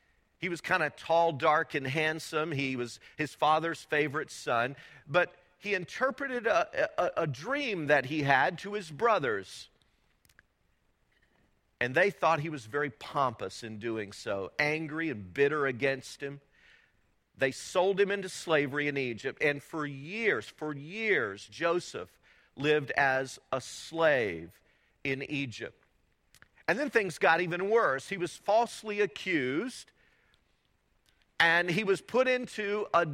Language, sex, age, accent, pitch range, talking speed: English, male, 50-69, American, 140-200 Hz, 140 wpm